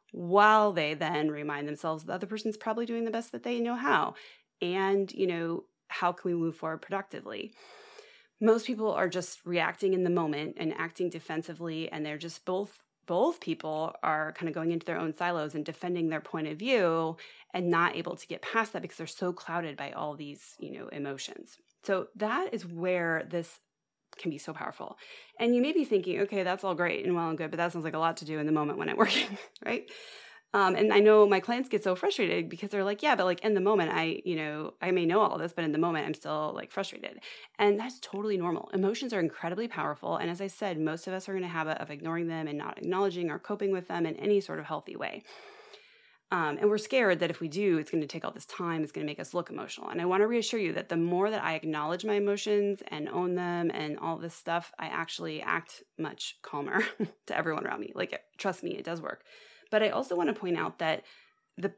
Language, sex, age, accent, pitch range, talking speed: English, female, 30-49, American, 165-210 Hz, 240 wpm